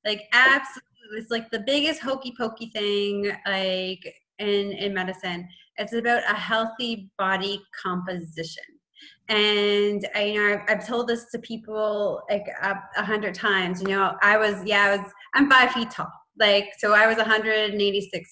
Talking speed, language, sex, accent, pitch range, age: 175 wpm, English, female, American, 200-235 Hz, 20-39